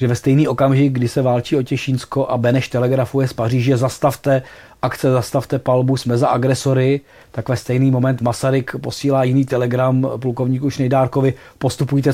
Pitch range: 125-150 Hz